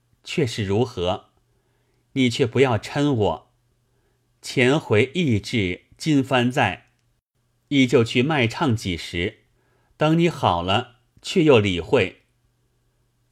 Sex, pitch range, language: male, 100-130 Hz, Chinese